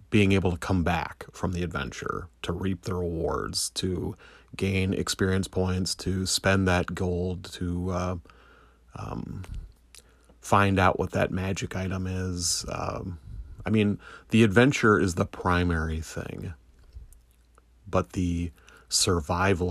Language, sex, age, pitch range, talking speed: English, male, 30-49, 80-95 Hz, 130 wpm